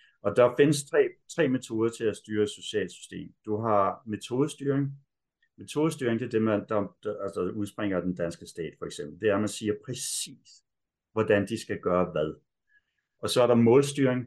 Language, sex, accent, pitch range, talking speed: Danish, male, native, 95-120 Hz, 185 wpm